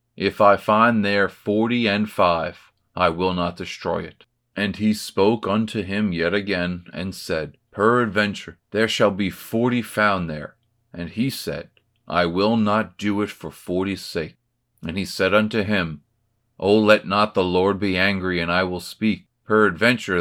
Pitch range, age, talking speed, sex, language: 85-110 Hz, 40-59, 165 wpm, male, English